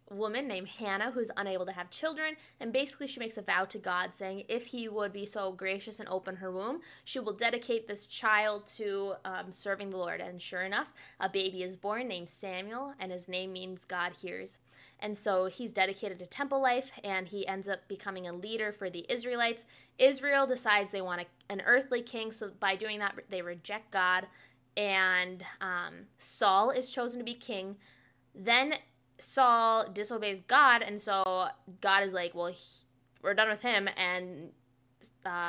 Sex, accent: female, American